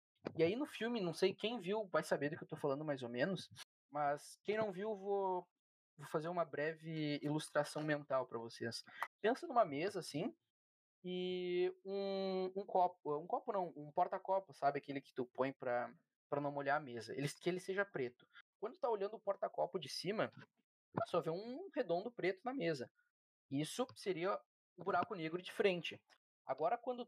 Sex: male